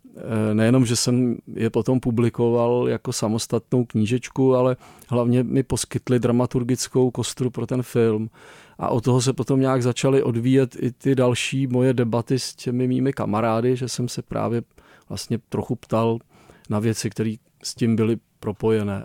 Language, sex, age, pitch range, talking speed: Czech, male, 40-59, 115-145 Hz, 155 wpm